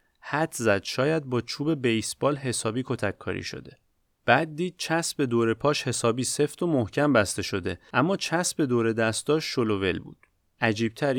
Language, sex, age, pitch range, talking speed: Persian, male, 30-49, 105-140 Hz, 150 wpm